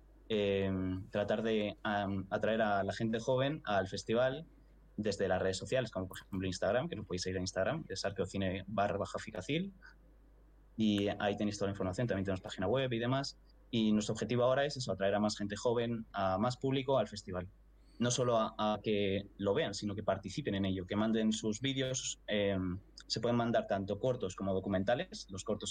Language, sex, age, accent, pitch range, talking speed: Spanish, male, 20-39, Spanish, 95-120 Hz, 195 wpm